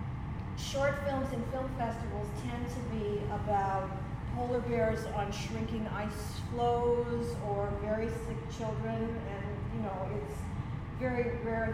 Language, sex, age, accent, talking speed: English, female, 40-59, American, 130 wpm